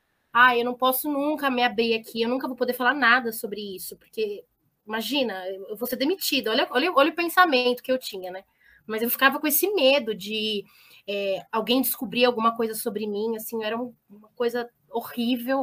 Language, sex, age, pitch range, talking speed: Portuguese, female, 20-39, 225-280 Hz, 190 wpm